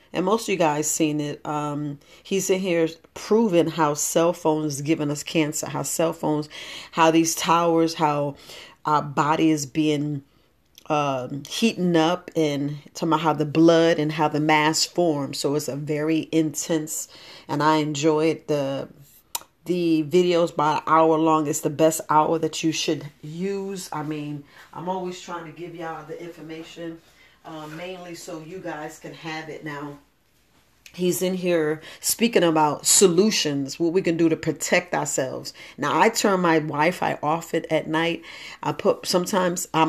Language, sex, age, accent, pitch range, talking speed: English, female, 40-59, American, 155-170 Hz, 170 wpm